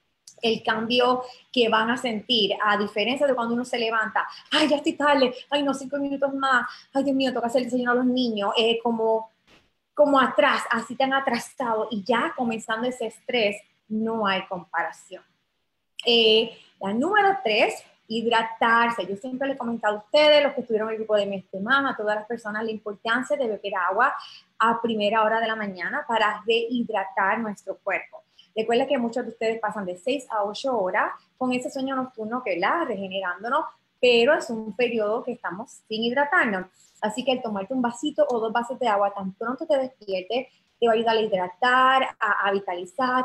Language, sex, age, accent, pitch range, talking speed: Spanish, female, 20-39, American, 210-255 Hz, 190 wpm